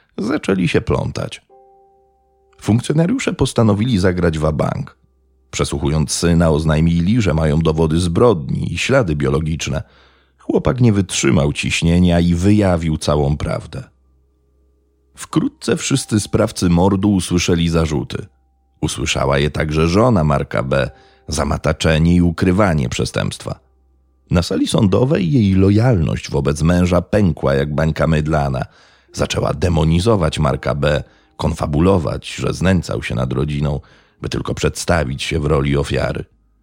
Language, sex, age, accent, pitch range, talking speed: Polish, male, 40-59, native, 75-95 Hz, 115 wpm